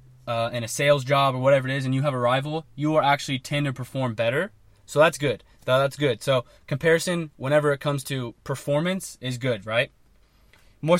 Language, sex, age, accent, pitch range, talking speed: English, male, 20-39, American, 125-155 Hz, 200 wpm